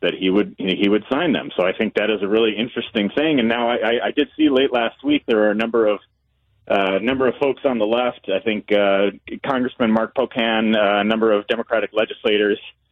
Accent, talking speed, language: American, 230 wpm, English